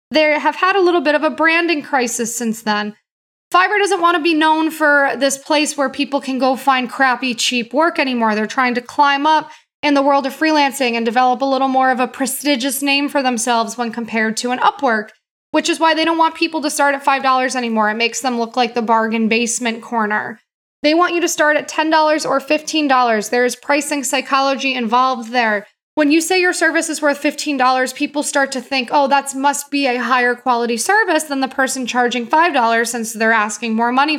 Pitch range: 245-300 Hz